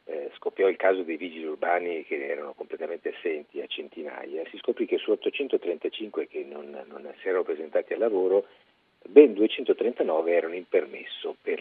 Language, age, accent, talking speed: Italian, 50-69, native, 160 wpm